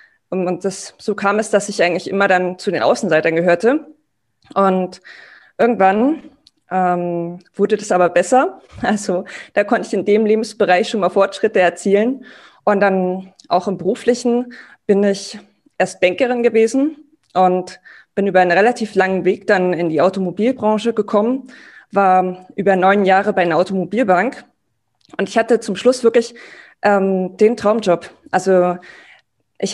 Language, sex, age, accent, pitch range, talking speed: German, female, 20-39, German, 185-225 Hz, 145 wpm